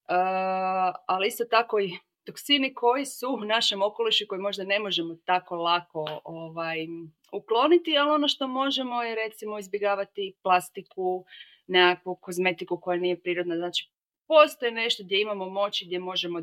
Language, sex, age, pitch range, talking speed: Croatian, female, 30-49, 170-215 Hz, 145 wpm